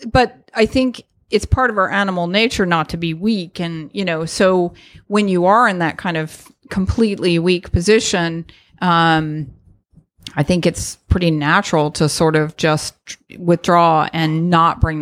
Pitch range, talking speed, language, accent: 155-185 Hz, 165 wpm, English, American